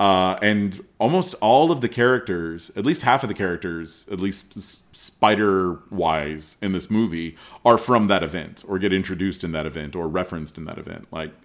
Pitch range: 85-100 Hz